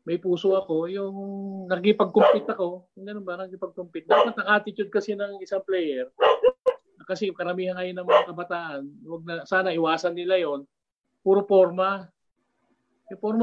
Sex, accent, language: male, Filipino, English